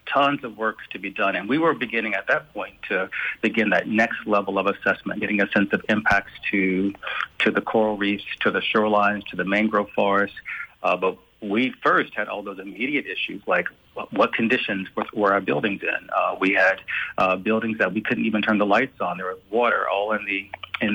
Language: English